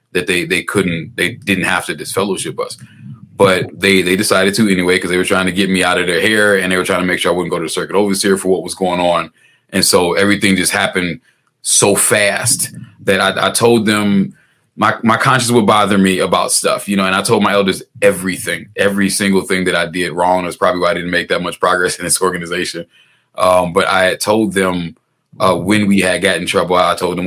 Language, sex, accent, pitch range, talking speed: English, male, American, 90-100 Hz, 240 wpm